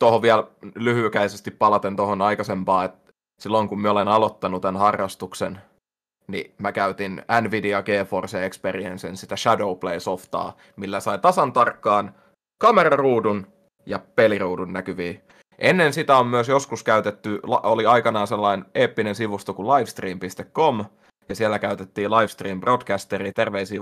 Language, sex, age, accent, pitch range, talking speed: Finnish, male, 30-49, native, 100-115 Hz, 125 wpm